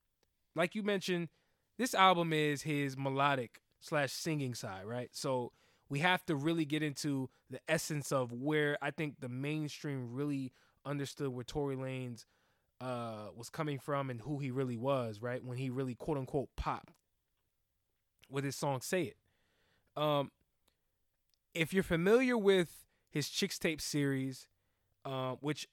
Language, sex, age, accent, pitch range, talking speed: English, male, 20-39, American, 130-160 Hz, 150 wpm